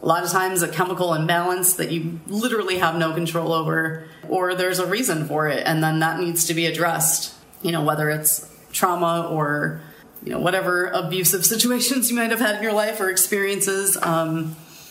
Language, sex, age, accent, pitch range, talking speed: English, female, 30-49, American, 160-185 Hz, 190 wpm